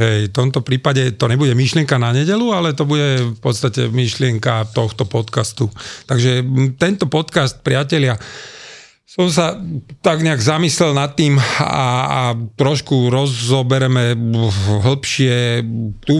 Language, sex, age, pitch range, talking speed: Slovak, male, 40-59, 115-150 Hz, 125 wpm